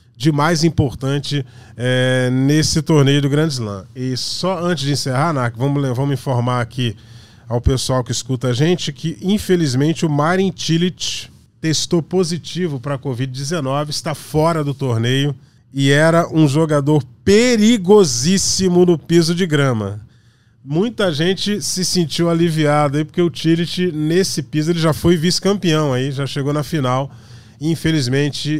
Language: Portuguese